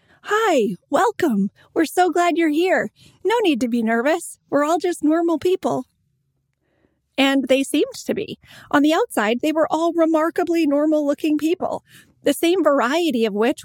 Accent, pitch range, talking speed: American, 235-305 Hz, 160 wpm